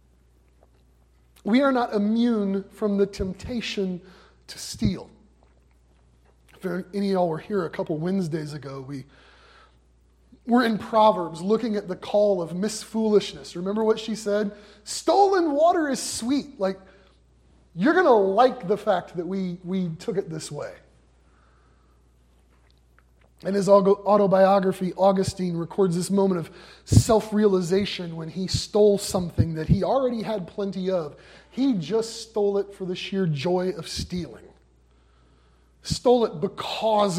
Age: 30-49